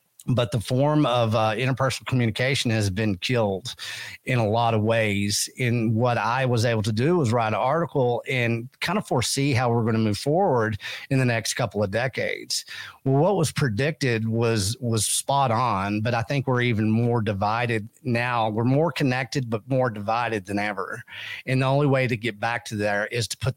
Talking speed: 195 wpm